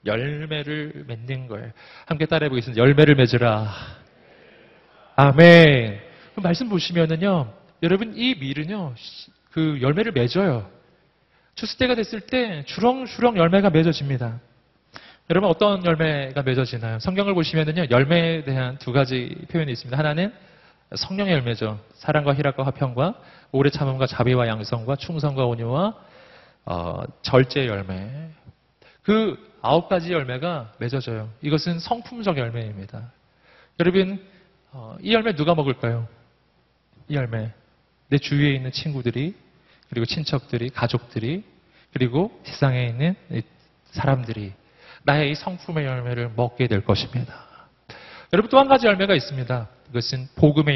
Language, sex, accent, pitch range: Korean, male, native, 120-170 Hz